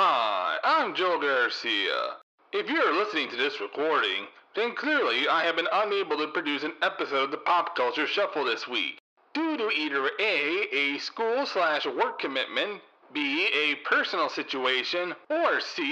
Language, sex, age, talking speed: English, male, 40-59, 155 wpm